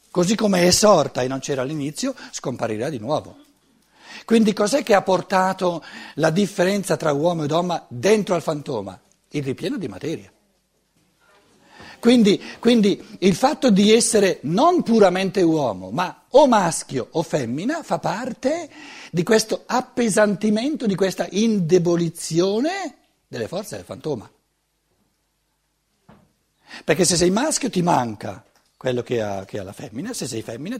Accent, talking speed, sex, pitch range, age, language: native, 135 wpm, male, 135-210 Hz, 60-79, Italian